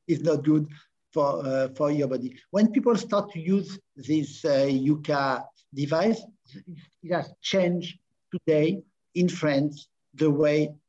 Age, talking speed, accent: 50-69, 140 wpm, Italian